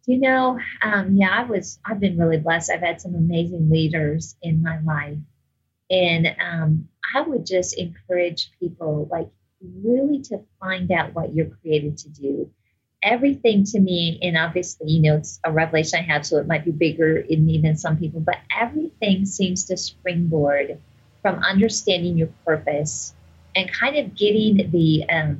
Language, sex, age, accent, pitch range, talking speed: English, female, 30-49, American, 155-205 Hz, 170 wpm